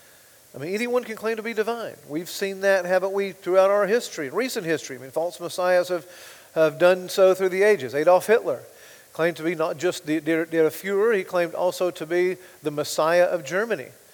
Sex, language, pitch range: male, English, 165-195 Hz